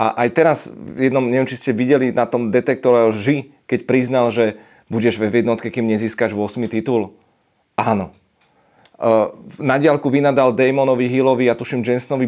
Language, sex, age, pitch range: Czech, male, 30-49, 115-140 Hz